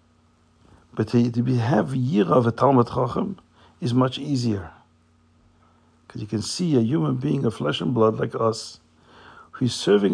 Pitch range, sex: 80-125 Hz, male